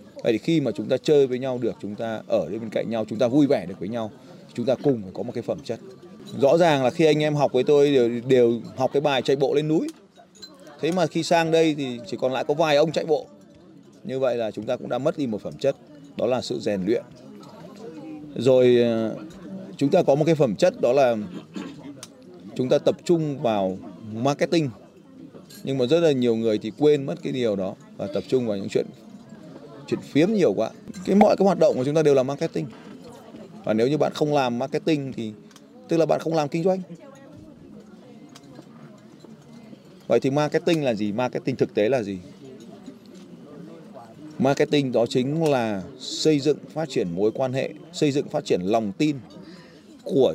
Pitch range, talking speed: 120-160 Hz, 205 wpm